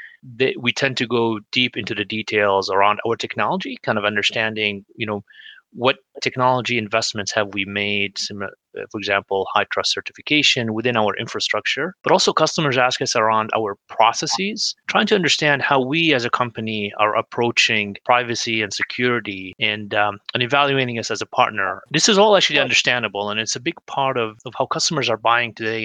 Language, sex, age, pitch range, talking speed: English, male, 30-49, 105-130 Hz, 180 wpm